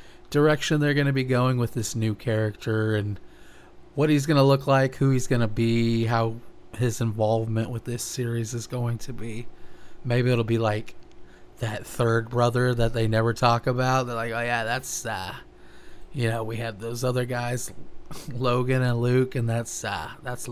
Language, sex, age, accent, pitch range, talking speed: English, male, 30-49, American, 115-130 Hz, 185 wpm